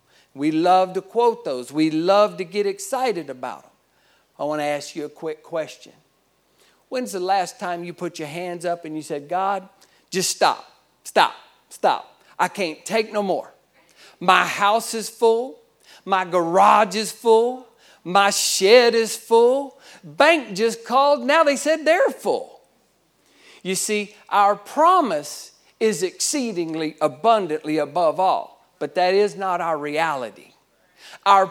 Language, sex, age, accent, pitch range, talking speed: English, male, 50-69, American, 165-225 Hz, 150 wpm